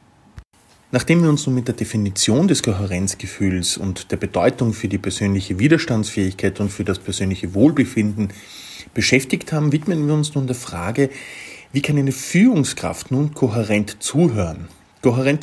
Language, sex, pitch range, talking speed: German, male, 100-130 Hz, 145 wpm